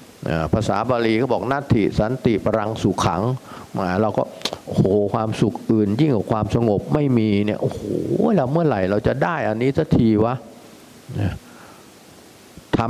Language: Thai